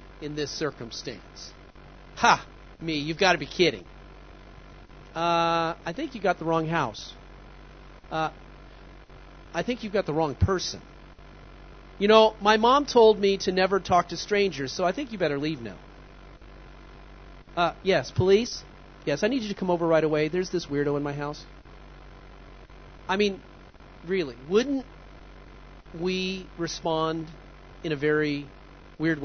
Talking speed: 150 wpm